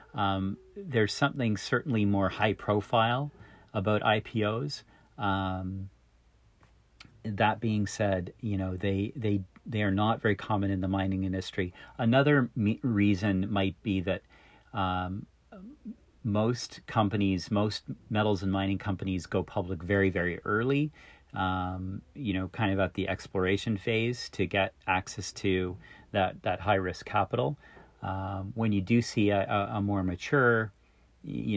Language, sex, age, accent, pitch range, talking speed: English, male, 40-59, American, 95-110 Hz, 140 wpm